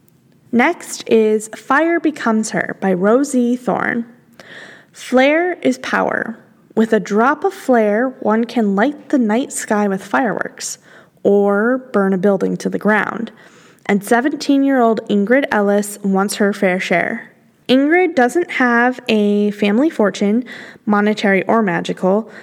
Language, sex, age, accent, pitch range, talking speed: English, female, 10-29, American, 205-255 Hz, 130 wpm